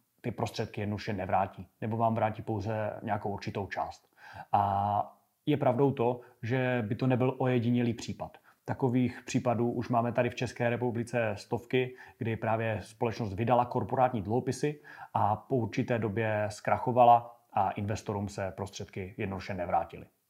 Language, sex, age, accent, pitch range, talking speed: Czech, male, 30-49, native, 110-125 Hz, 140 wpm